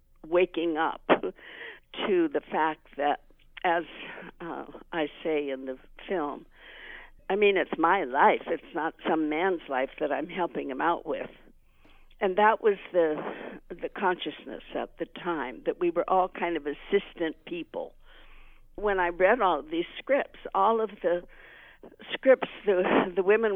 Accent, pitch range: American, 150-195 Hz